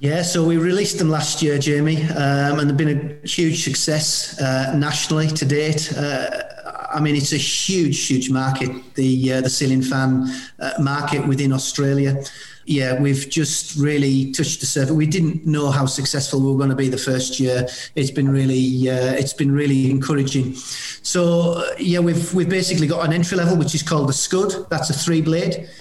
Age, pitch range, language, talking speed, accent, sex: 40-59, 135-160 Hz, English, 185 wpm, British, male